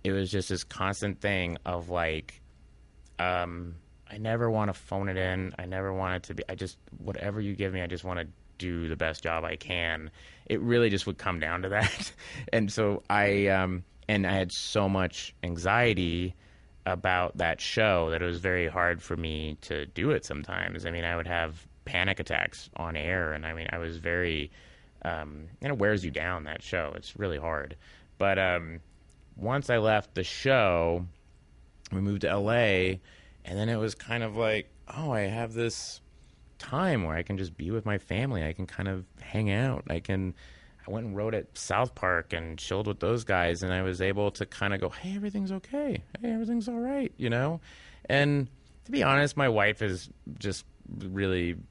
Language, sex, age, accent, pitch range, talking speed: English, male, 30-49, American, 85-105 Hz, 200 wpm